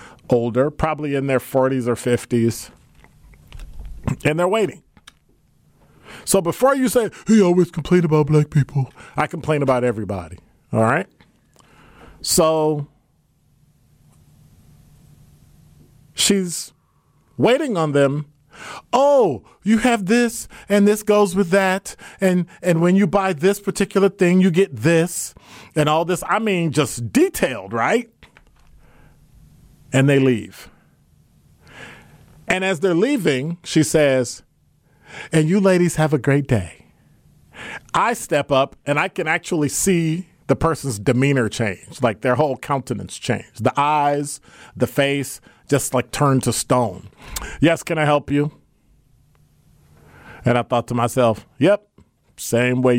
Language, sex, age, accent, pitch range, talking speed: English, male, 40-59, American, 125-180 Hz, 130 wpm